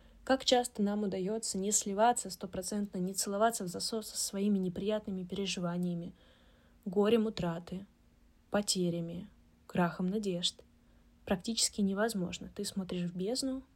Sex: female